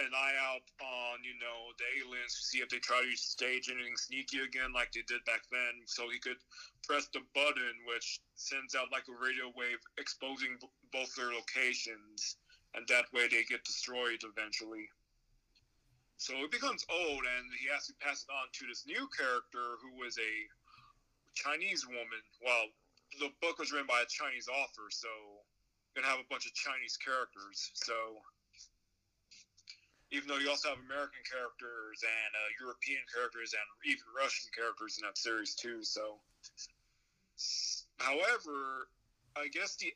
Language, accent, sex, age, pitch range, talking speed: English, American, male, 30-49, 120-135 Hz, 165 wpm